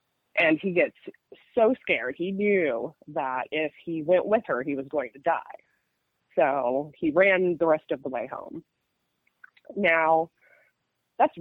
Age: 20-39